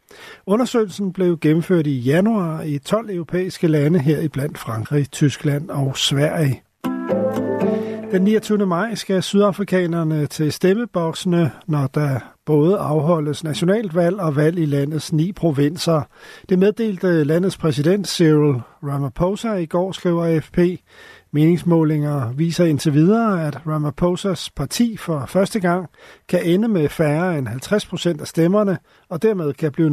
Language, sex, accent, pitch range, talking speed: Danish, male, native, 150-185 Hz, 130 wpm